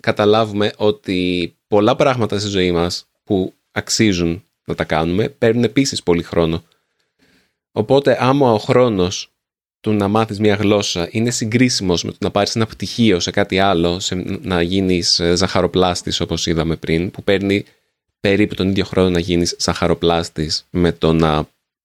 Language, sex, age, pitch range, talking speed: Greek, male, 20-39, 85-115 Hz, 150 wpm